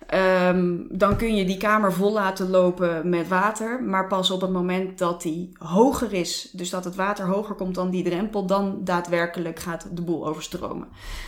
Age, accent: 20-39, Dutch